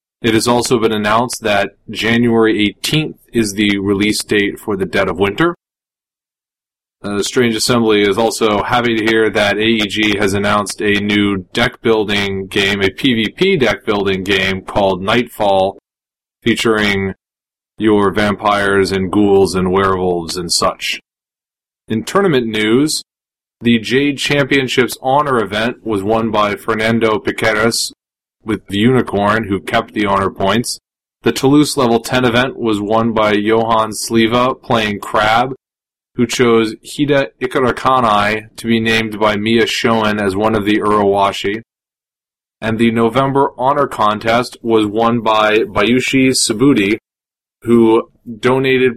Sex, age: male, 30-49